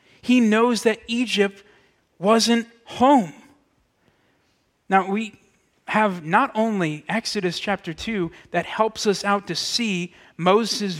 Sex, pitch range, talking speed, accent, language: male, 175-220 Hz, 115 wpm, American, English